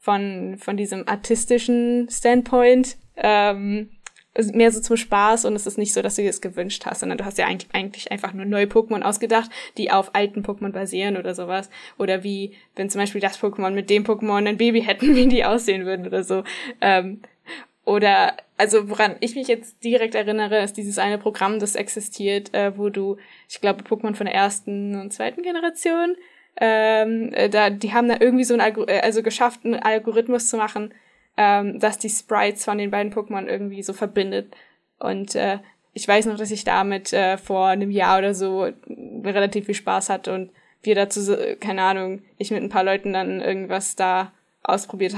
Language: German